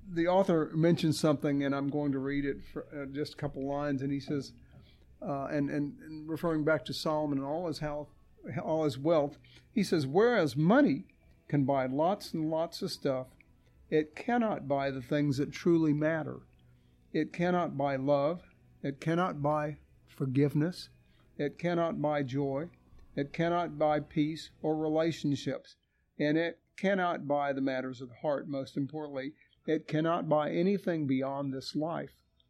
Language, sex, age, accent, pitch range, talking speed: English, male, 50-69, American, 140-160 Hz, 165 wpm